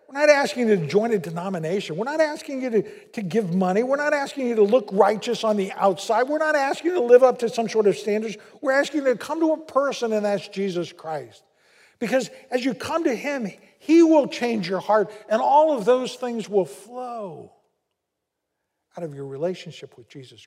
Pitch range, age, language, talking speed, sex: 150-240 Hz, 50-69, English, 215 wpm, male